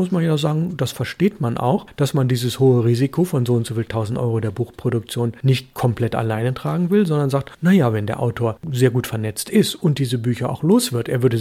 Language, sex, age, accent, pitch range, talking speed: German, male, 40-59, German, 115-155 Hz, 235 wpm